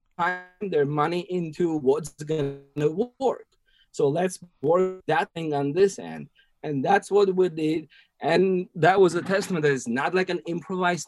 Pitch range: 120-175 Hz